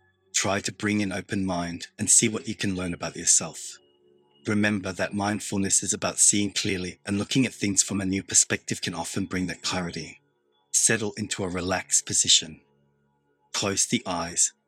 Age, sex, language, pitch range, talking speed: 30-49, male, English, 95-110 Hz, 170 wpm